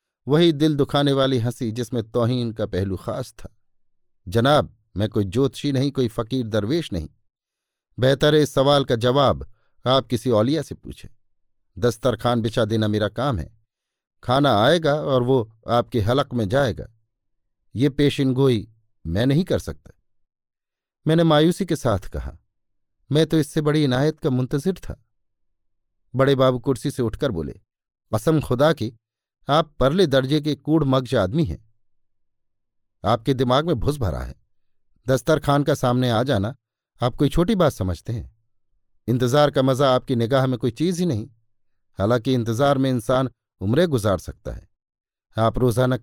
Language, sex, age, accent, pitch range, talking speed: Hindi, male, 50-69, native, 110-140 Hz, 155 wpm